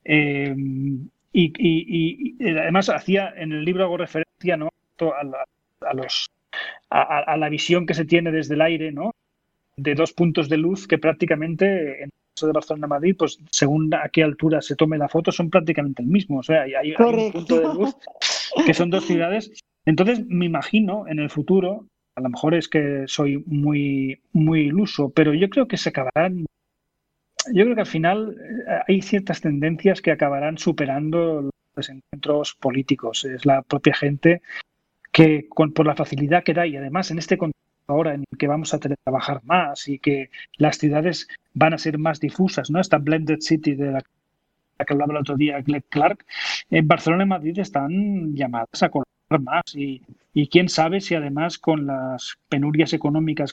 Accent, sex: Spanish, male